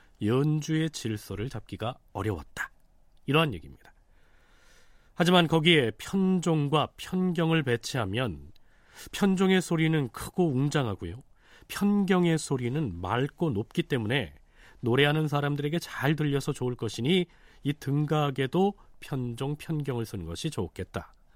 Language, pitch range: Korean, 110-160 Hz